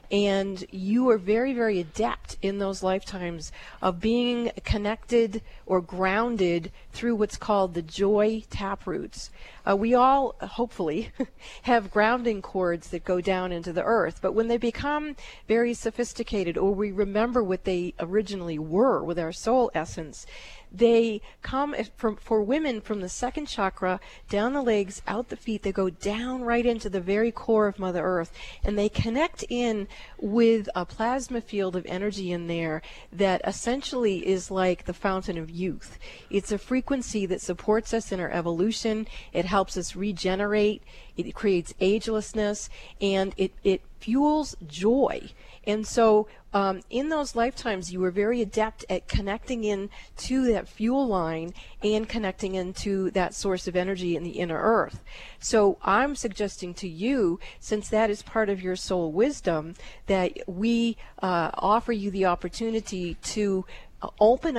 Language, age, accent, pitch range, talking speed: English, 40-59, American, 185-230 Hz, 155 wpm